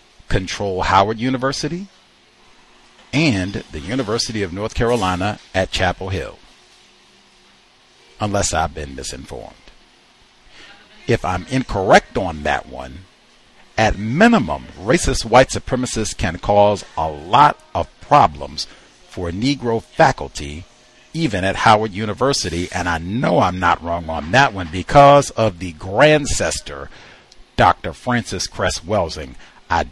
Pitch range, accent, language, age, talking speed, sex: 90-120 Hz, American, English, 50-69, 115 wpm, male